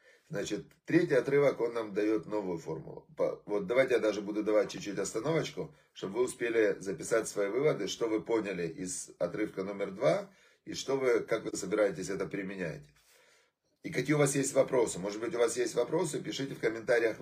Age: 30-49